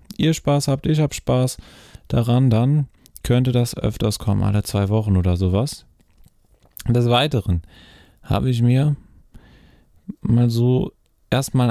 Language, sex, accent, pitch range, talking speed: German, male, German, 95-120 Hz, 130 wpm